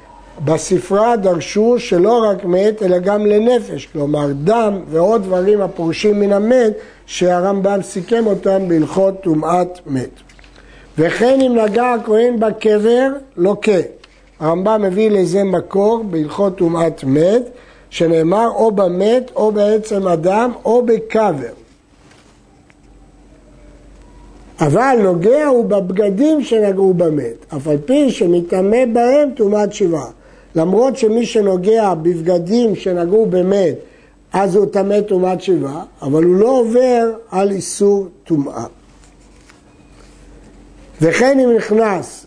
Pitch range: 180-230 Hz